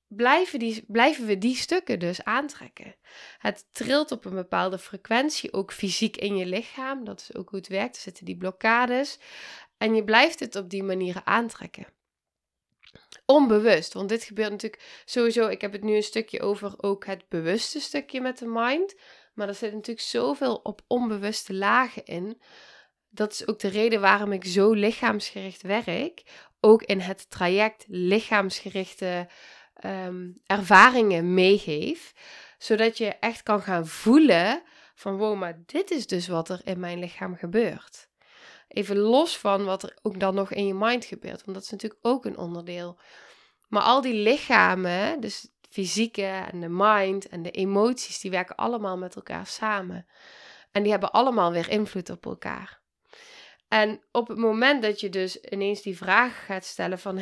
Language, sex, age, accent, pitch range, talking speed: Dutch, female, 20-39, Dutch, 190-230 Hz, 170 wpm